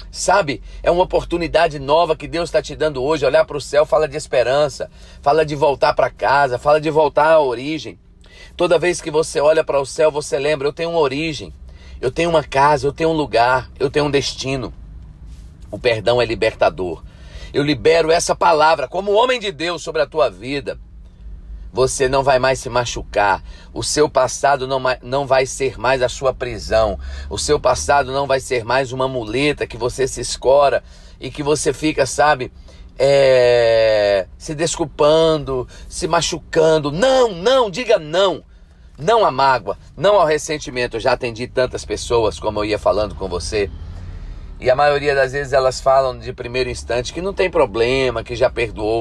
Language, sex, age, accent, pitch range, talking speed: Portuguese, male, 40-59, Brazilian, 115-155 Hz, 180 wpm